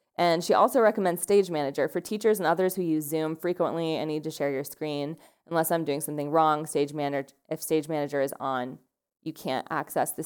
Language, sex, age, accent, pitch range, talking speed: English, female, 20-39, American, 145-180 Hz, 210 wpm